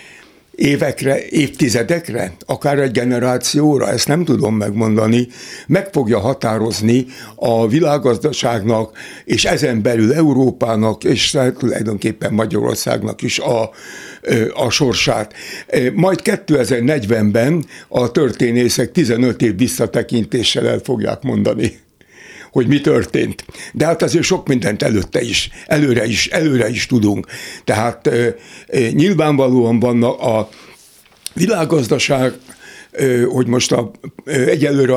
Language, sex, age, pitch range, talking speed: Hungarian, male, 60-79, 120-155 Hz, 100 wpm